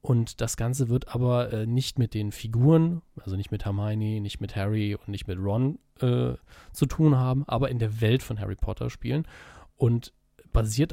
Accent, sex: German, male